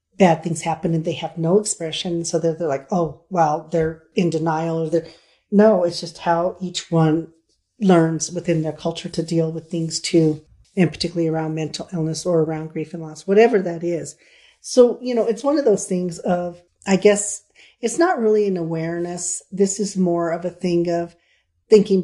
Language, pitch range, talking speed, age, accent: English, 165-185 Hz, 195 wpm, 40-59, American